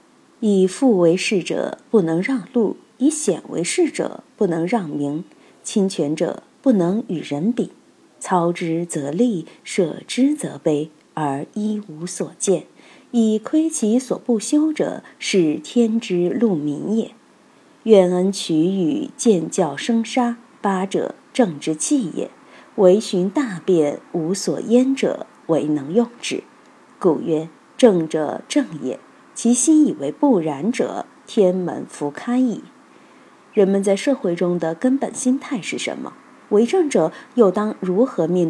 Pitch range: 170-255 Hz